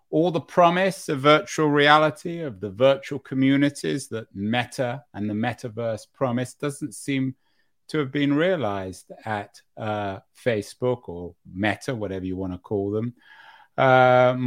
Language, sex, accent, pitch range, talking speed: English, male, British, 110-140 Hz, 140 wpm